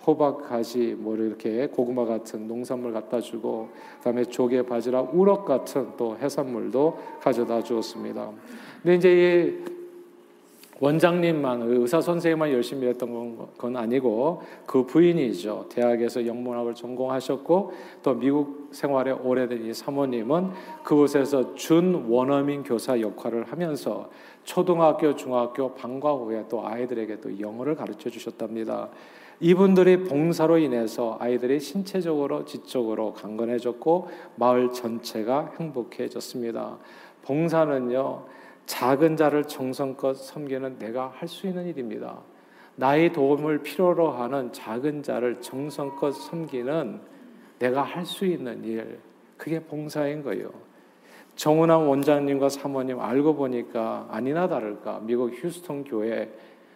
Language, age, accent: Korean, 40-59, native